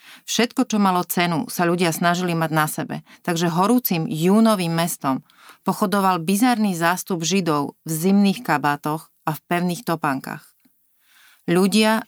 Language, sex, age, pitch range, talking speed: Slovak, female, 30-49, 165-205 Hz, 130 wpm